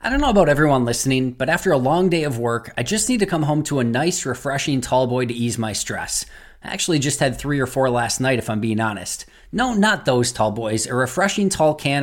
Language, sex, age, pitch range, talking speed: English, male, 20-39, 125-165 Hz, 245 wpm